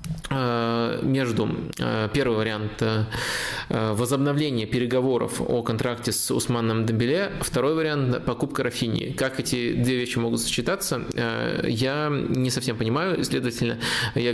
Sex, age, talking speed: male, 20-39, 110 wpm